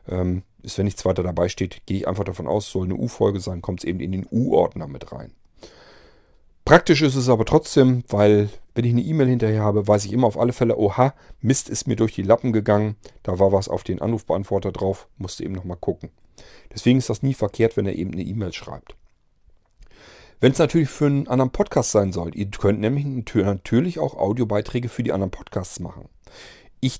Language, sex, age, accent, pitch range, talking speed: German, male, 40-59, German, 95-125 Hz, 205 wpm